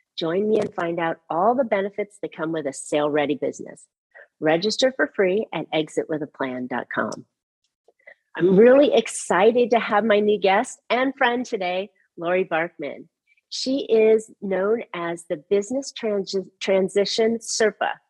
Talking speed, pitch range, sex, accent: 135 wpm, 170-235 Hz, female, American